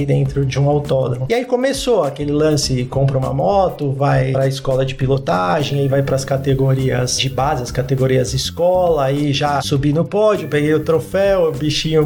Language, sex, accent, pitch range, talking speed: Portuguese, male, Brazilian, 135-160 Hz, 180 wpm